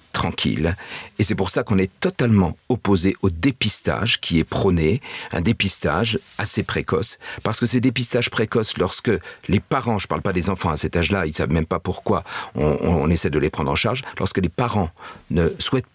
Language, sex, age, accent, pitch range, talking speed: French, male, 50-69, French, 95-125 Hz, 205 wpm